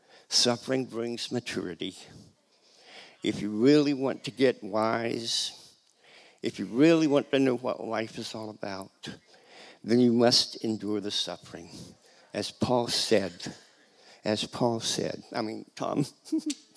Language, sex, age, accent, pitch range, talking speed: English, male, 50-69, American, 105-135 Hz, 130 wpm